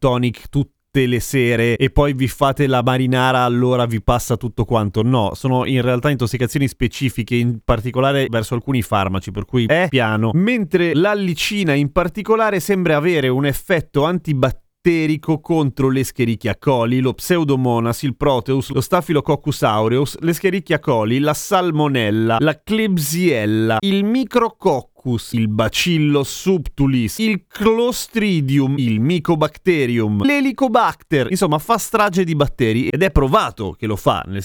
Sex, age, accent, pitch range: male, 30-49, native, 125-185 Hz